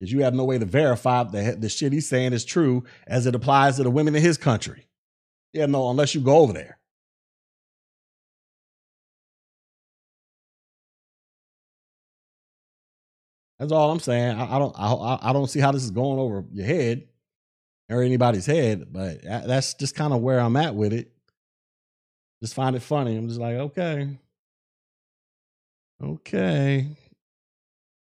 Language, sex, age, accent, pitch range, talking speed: English, male, 30-49, American, 115-145 Hz, 150 wpm